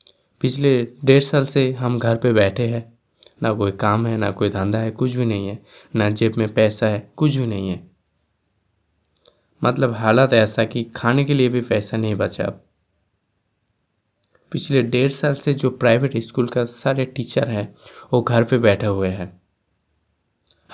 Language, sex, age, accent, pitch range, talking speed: Hindi, male, 20-39, native, 105-125 Hz, 170 wpm